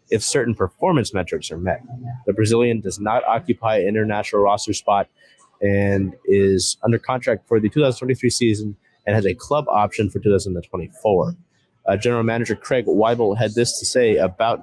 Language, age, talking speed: English, 30-49, 165 wpm